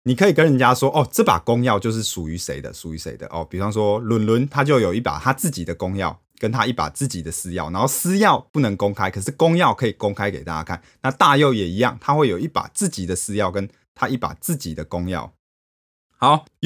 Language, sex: Chinese, male